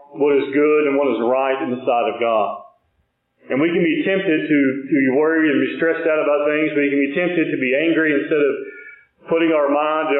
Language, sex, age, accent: English, male, 40-59, American